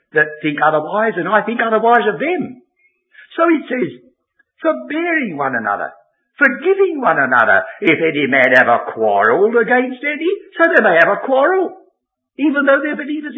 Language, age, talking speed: English, 60-79, 155 wpm